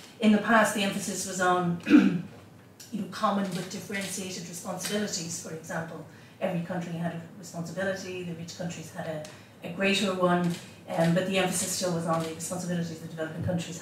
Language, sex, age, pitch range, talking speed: English, female, 40-59, 170-210 Hz, 175 wpm